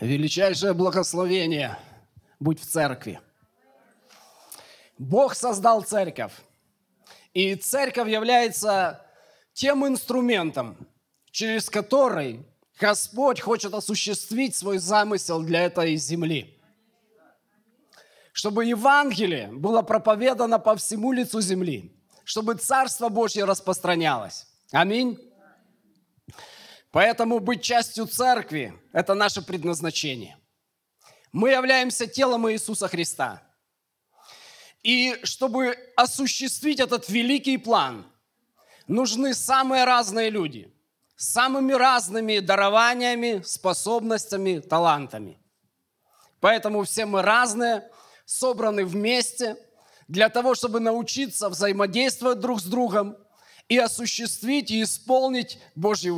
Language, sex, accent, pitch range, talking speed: Russian, male, native, 185-245 Hz, 90 wpm